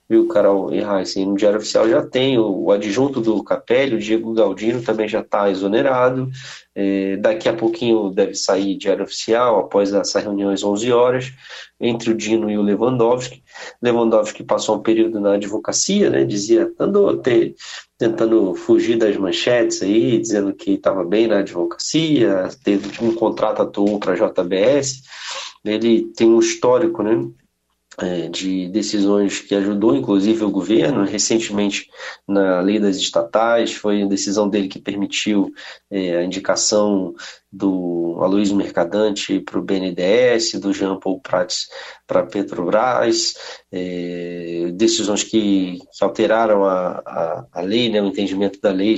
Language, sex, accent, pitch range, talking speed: Portuguese, male, Brazilian, 100-115 Hz, 150 wpm